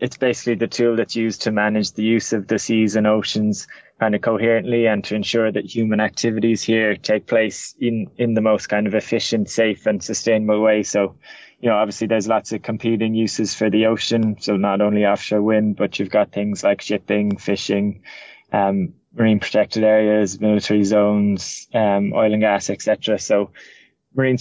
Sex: male